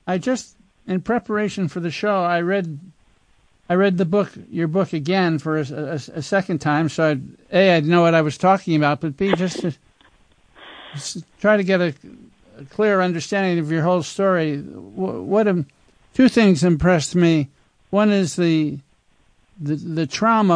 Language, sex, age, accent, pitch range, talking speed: English, male, 60-79, American, 165-200 Hz, 180 wpm